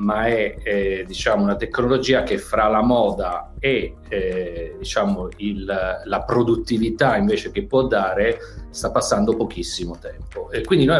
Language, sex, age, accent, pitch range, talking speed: Italian, male, 40-59, native, 100-150 Hz, 145 wpm